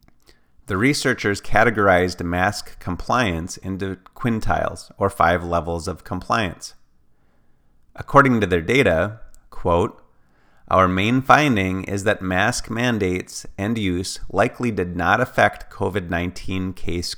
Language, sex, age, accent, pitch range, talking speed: English, male, 30-49, American, 85-105 Hz, 110 wpm